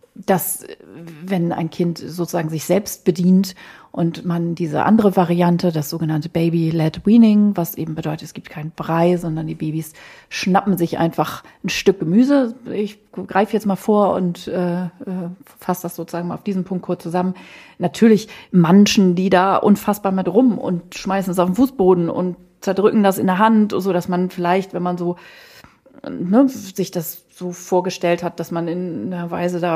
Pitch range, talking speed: 175-200 Hz, 175 wpm